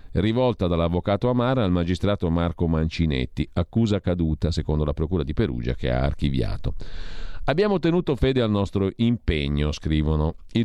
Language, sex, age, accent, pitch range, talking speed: Italian, male, 50-69, native, 80-115 Hz, 140 wpm